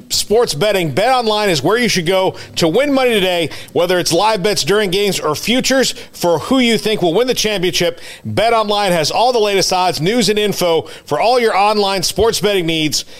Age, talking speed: 40-59, 210 wpm